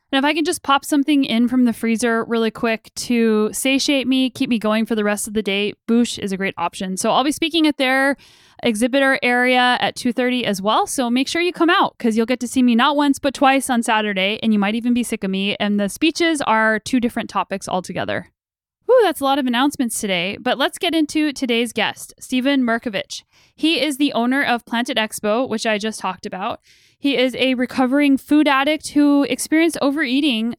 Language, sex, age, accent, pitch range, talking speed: English, female, 10-29, American, 225-285 Hz, 220 wpm